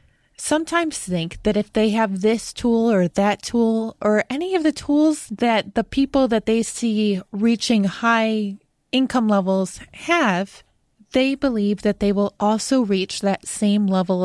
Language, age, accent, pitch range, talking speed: English, 20-39, American, 195-235 Hz, 155 wpm